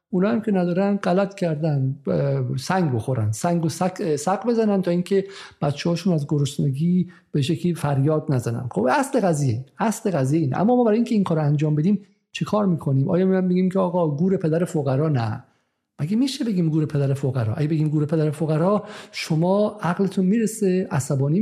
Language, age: Persian, 50-69